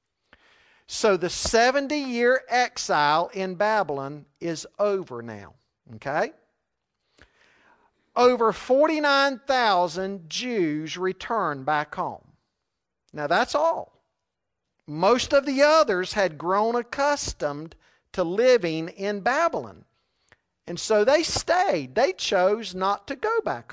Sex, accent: male, American